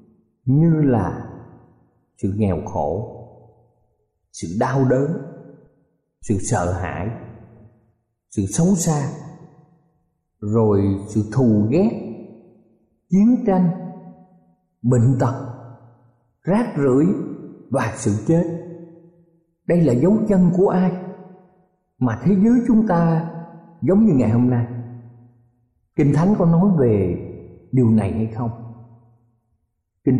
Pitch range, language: 110-170 Hz, Vietnamese